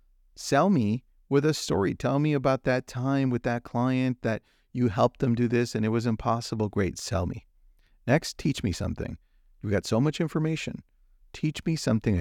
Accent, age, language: American, 40-59, English